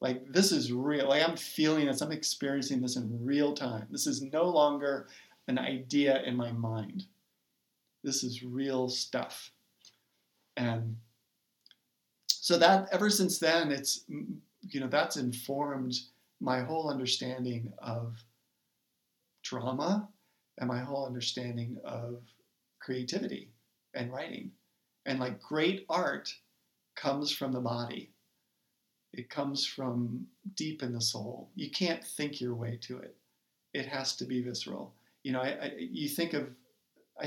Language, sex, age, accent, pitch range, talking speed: English, male, 50-69, American, 125-145 Hz, 140 wpm